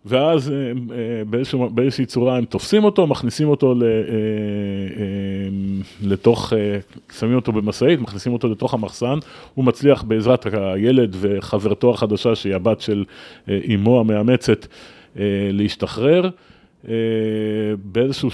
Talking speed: 95 wpm